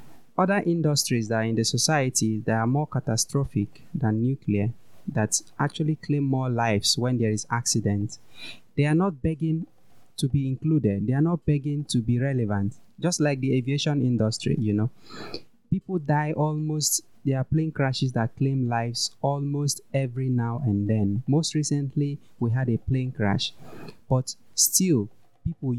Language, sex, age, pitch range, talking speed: English, male, 30-49, 115-145 Hz, 160 wpm